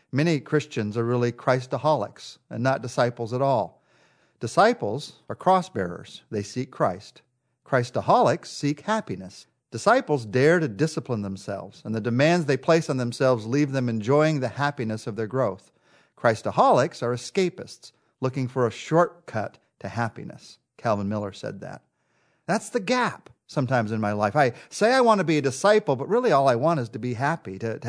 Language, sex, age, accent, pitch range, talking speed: English, male, 50-69, American, 115-155 Hz, 170 wpm